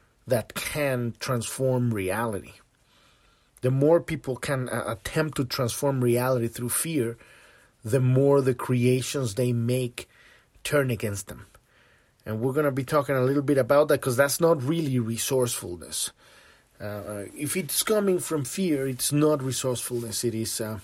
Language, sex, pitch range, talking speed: English, male, 115-145 Hz, 150 wpm